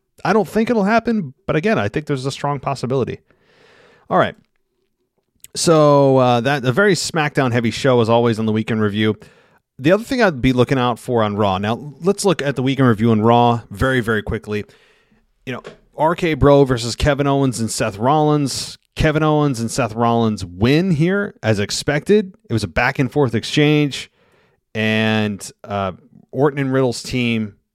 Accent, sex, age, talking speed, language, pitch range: American, male, 30-49, 180 wpm, English, 110-145 Hz